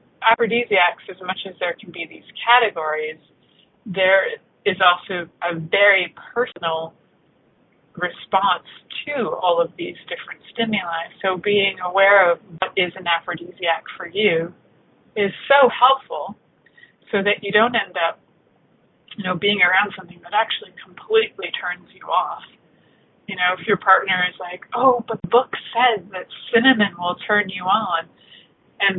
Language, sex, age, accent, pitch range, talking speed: English, female, 30-49, American, 175-215 Hz, 145 wpm